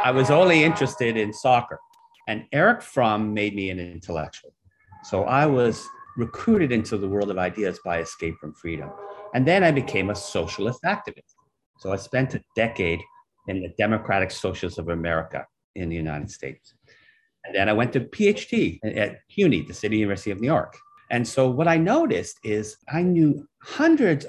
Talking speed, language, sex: 175 wpm, English, male